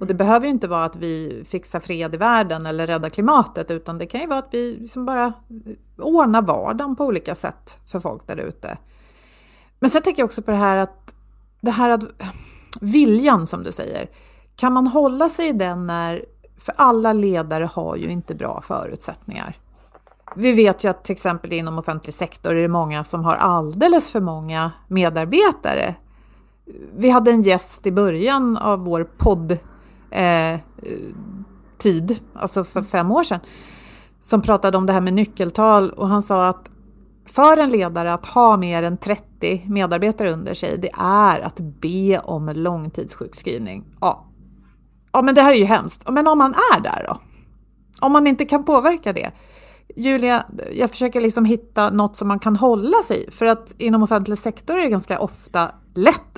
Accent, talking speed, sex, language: native, 175 wpm, female, Swedish